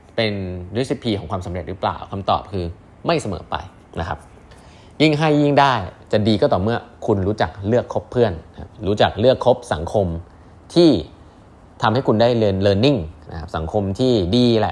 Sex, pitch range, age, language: male, 90-115 Hz, 20-39, Thai